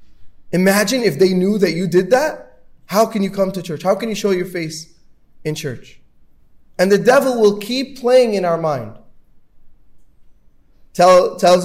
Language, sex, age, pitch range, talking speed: English, male, 30-49, 165-210 Hz, 165 wpm